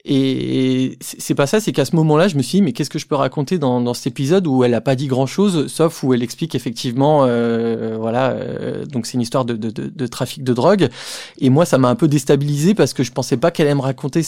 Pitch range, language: 125-160 Hz, French